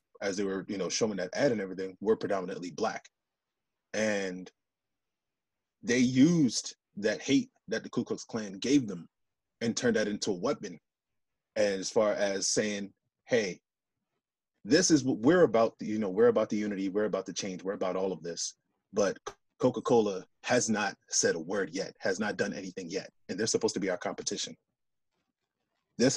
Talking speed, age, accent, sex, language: 175 wpm, 30-49, American, male, English